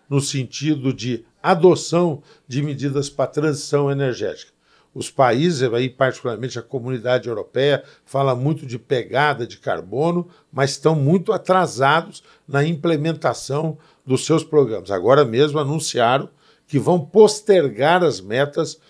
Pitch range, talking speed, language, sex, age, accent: 135-180 Hz, 125 wpm, Portuguese, male, 60-79, Brazilian